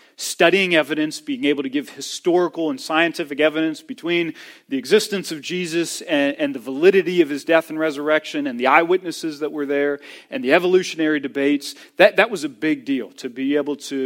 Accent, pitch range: American, 135-190 Hz